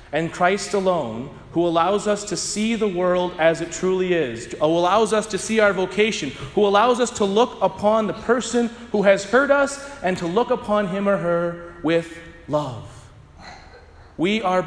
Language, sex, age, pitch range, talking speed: English, male, 30-49, 115-180 Hz, 180 wpm